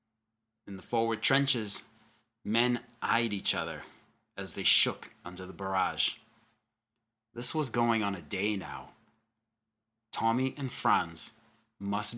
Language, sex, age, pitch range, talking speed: English, male, 30-49, 105-115 Hz, 125 wpm